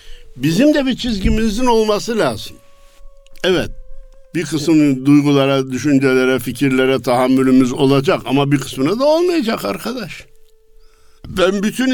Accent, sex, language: native, male, Turkish